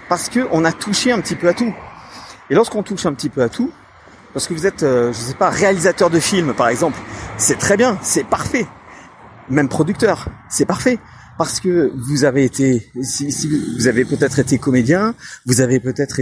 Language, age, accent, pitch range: French, 30-49, French, 125-175 Hz